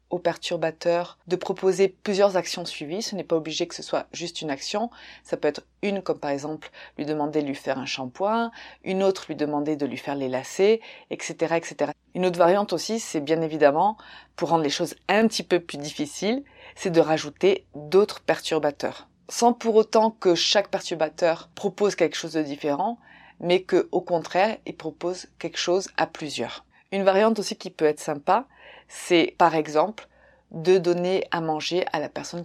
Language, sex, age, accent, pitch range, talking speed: French, female, 20-39, French, 155-190 Hz, 185 wpm